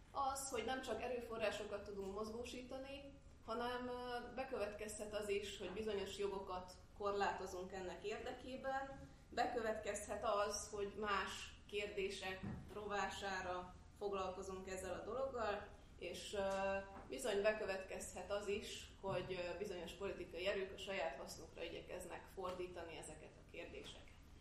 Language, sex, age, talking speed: Hungarian, female, 30-49, 110 wpm